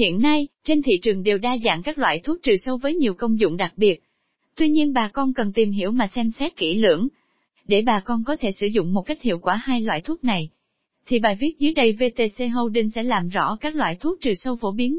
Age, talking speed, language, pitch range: 20-39, 250 wpm, Vietnamese, 210-295 Hz